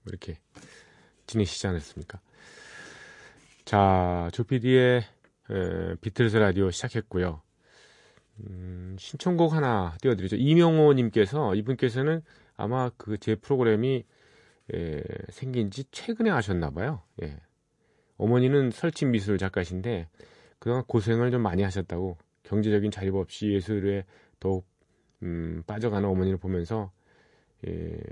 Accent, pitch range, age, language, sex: native, 95-130 Hz, 30-49, Korean, male